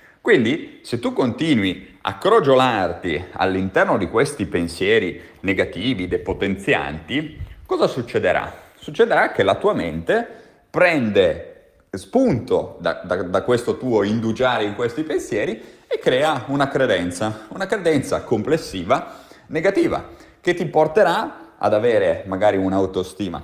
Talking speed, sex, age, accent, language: 115 wpm, male, 30-49, native, Italian